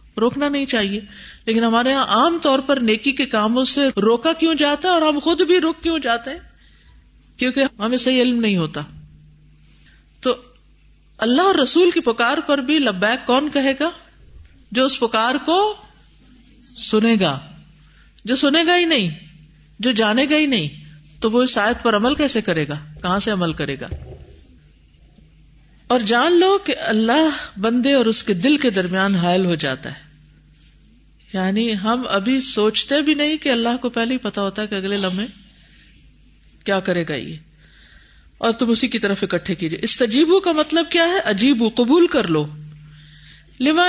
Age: 50-69